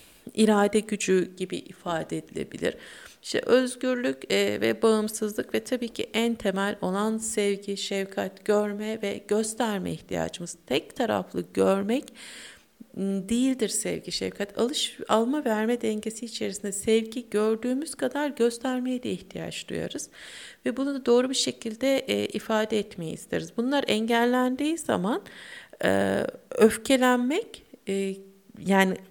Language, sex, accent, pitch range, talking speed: Turkish, female, native, 195-255 Hz, 110 wpm